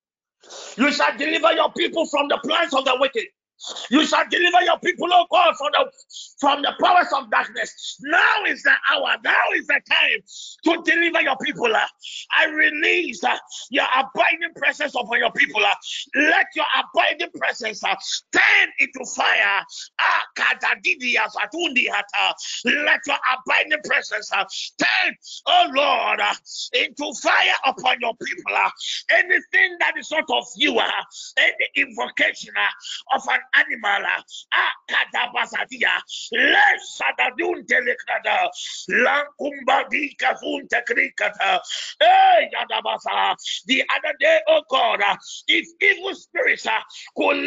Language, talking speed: English, 140 wpm